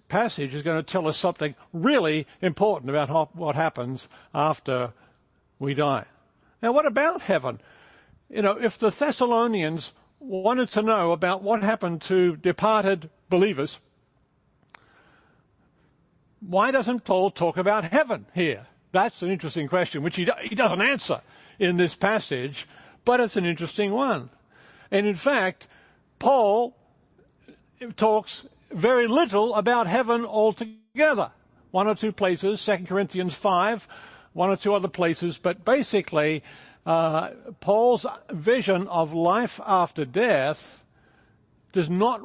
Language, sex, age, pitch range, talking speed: English, male, 60-79, 140-210 Hz, 130 wpm